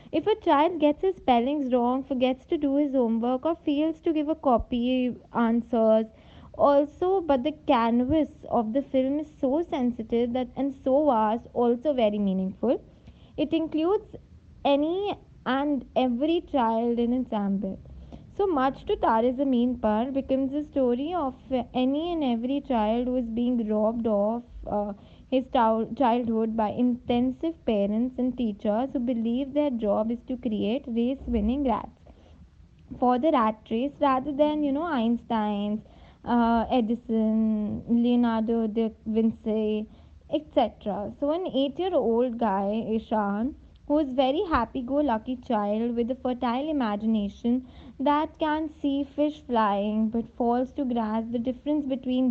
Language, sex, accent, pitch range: English, female, Indian, 225-285 Hz